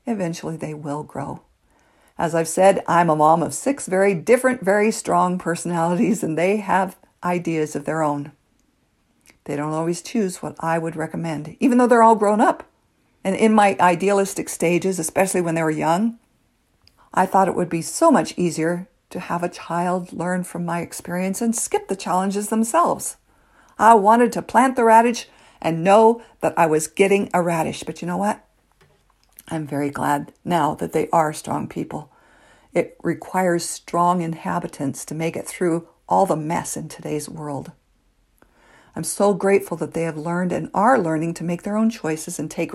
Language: English